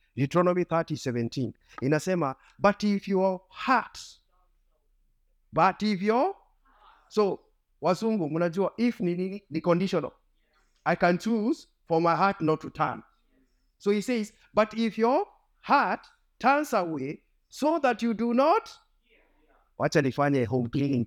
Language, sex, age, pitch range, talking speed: English, male, 50-69, 140-220 Hz, 115 wpm